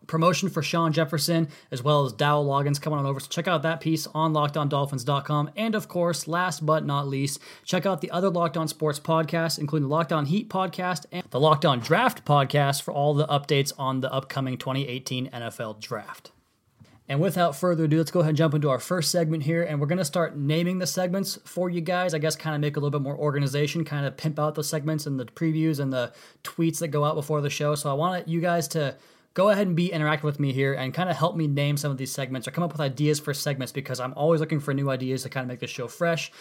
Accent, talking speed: American, 255 wpm